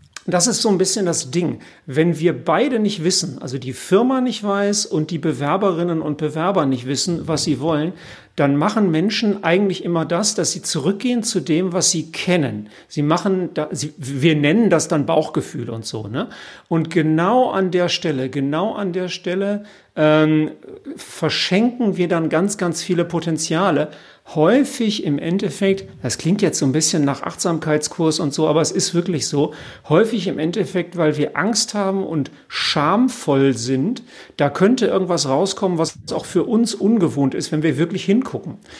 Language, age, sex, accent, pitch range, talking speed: German, 50-69, male, German, 155-190 Hz, 170 wpm